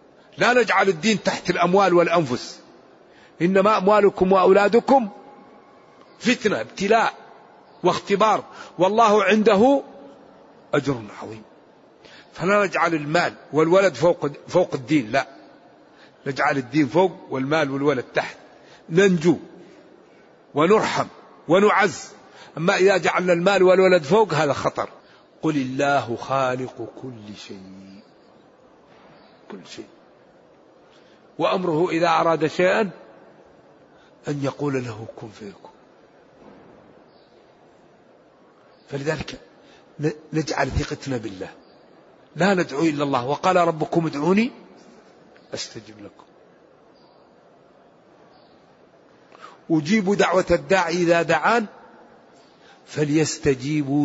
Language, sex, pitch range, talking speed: Arabic, male, 145-190 Hz, 85 wpm